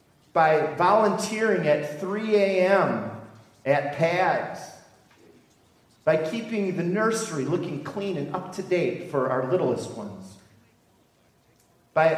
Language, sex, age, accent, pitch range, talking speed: English, male, 40-59, American, 130-180 Hz, 110 wpm